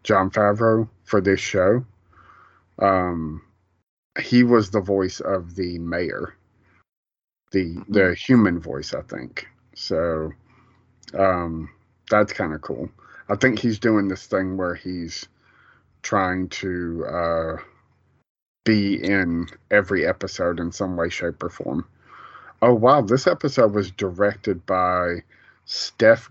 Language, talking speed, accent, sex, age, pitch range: English, 125 wpm, American, male, 30-49, 90-105 Hz